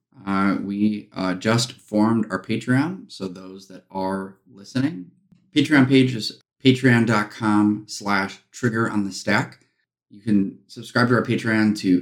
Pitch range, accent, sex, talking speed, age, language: 95-110 Hz, American, male, 125 wpm, 20-39, English